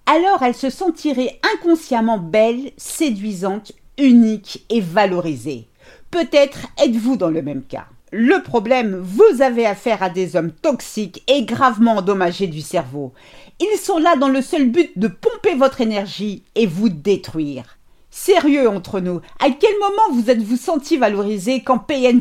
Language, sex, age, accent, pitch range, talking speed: French, female, 50-69, French, 195-285 Hz, 150 wpm